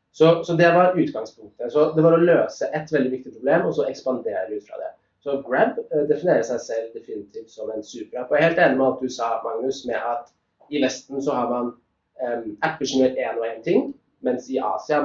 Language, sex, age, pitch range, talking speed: English, male, 30-49, 125-160 Hz, 210 wpm